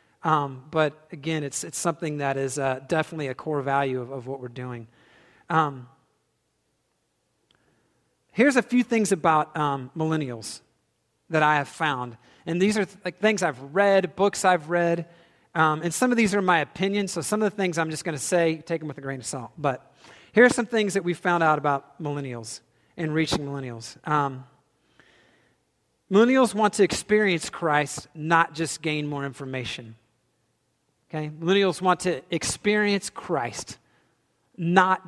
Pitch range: 140-180 Hz